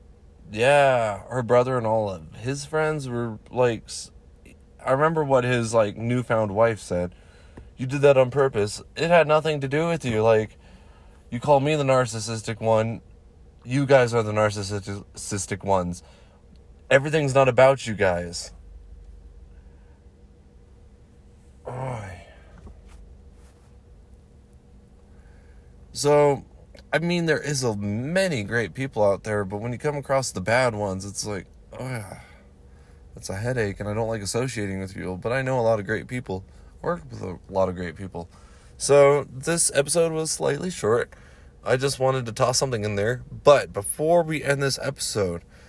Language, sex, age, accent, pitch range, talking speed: English, male, 20-39, American, 80-130 Hz, 150 wpm